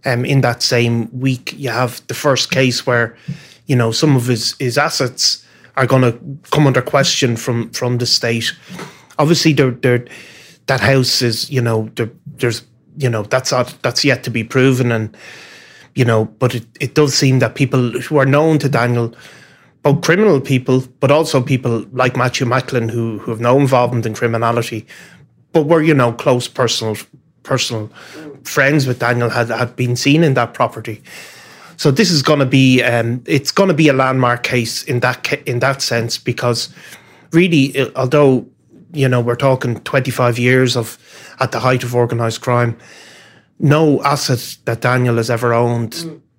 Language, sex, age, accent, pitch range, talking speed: English, male, 30-49, Irish, 120-135 Hz, 175 wpm